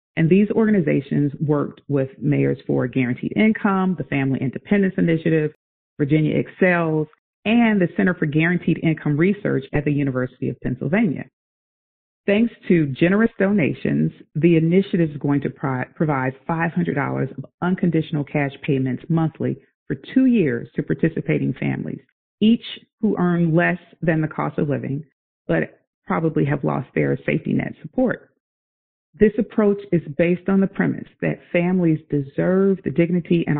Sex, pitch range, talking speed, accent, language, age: female, 145-185 Hz, 140 wpm, American, English, 40-59